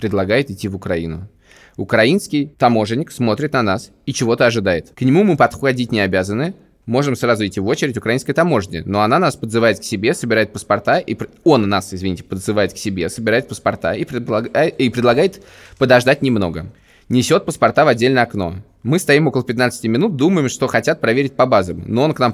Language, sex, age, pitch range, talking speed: Russian, male, 20-39, 110-145 Hz, 185 wpm